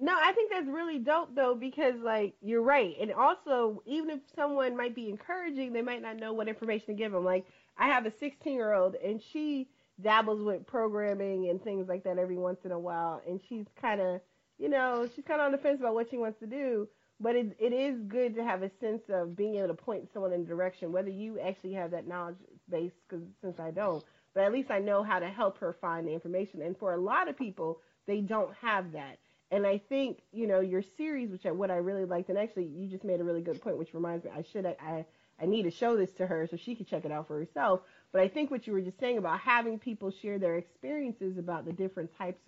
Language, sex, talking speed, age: English, female, 250 wpm, 30-49